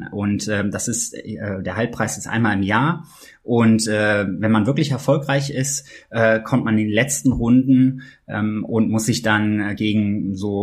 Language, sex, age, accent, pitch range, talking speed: German, male, 20-39, German, 100-115 Hz, 180 wpm